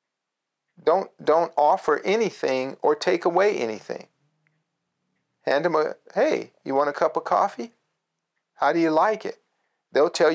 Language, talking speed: English, 145 wpm